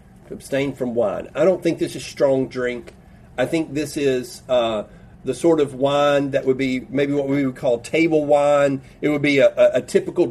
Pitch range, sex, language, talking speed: 135-185 Hz, male, English, 205 wpm